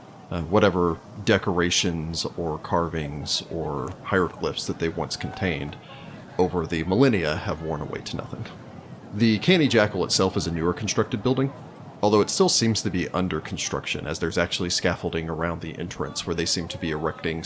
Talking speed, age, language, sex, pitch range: 170 wpm, 30-49, English, male, 85-110 Hz